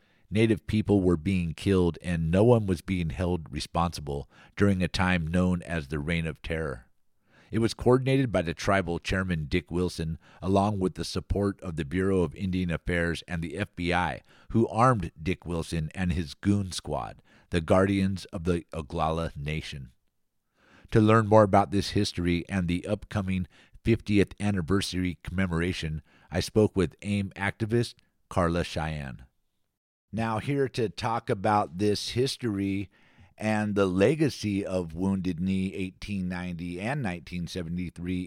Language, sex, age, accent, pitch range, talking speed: English, male, 50-69, American, 85-105 Hz, 145 wpm